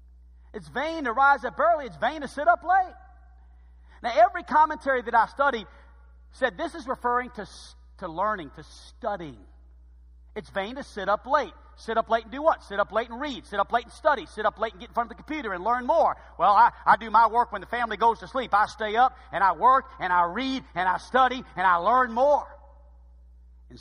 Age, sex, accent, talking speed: 40-59, male, American, 230 wpm